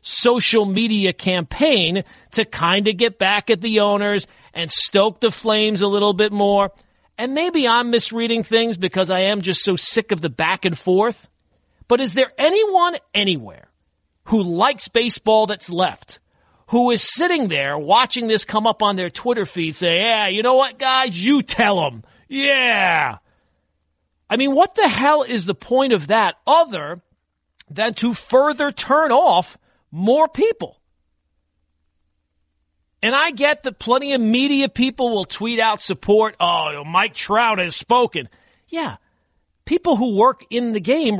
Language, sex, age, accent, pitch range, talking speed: English, male, 40-59, American, 180-240 Hz, 160 wpm